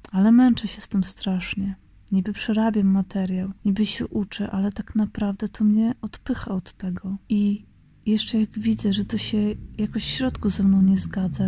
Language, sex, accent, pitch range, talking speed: Polish, female, native, 200-225 Hz, 180 wpm